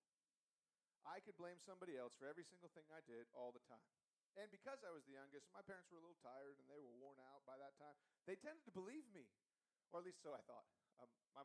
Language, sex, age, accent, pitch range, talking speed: English, male, 40-59, American, 135-180 Hz, 245 wpm